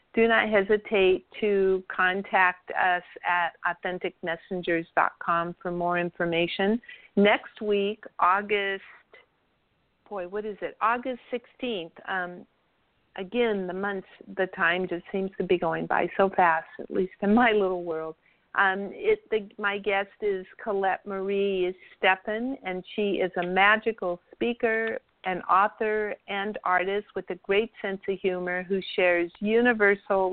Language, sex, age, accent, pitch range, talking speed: English, female, 50-69, American, 185-210 Hz, 135 wpm